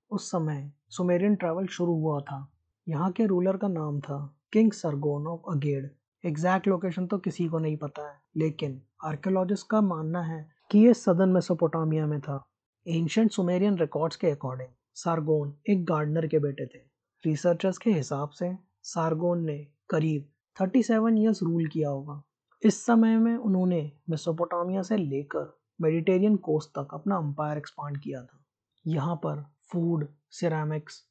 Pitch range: 150-195 Hz